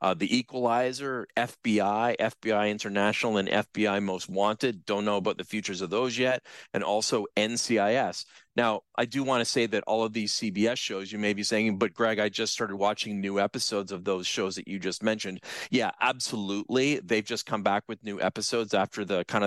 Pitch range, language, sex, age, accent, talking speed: 95-110 Hz, English, male, 40-59, American, 195 wpm